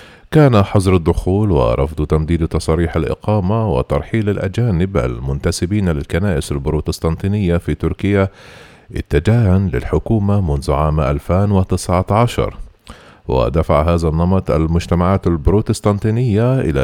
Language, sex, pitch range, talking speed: Arabic, male, 80-105 Hz, 90 wpm